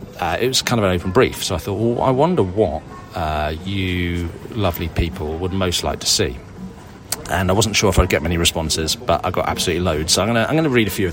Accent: British